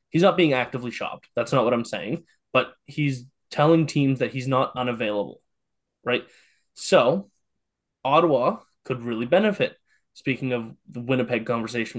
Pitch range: 115-140 Hz